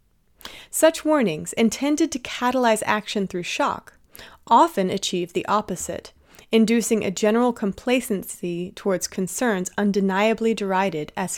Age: 30-49